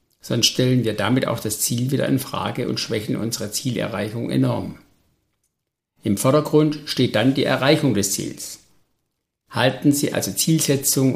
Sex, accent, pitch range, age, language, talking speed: male, German, 120-145 Hz, 60-79, German, 145 wpm